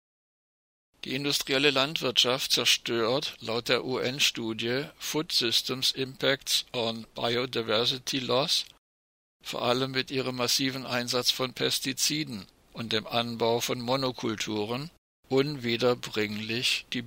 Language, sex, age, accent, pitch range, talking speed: German, male, 60-79, German, 115-135 Hz, 100 wpm